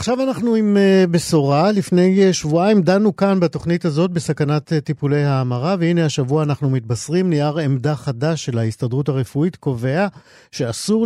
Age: 50-69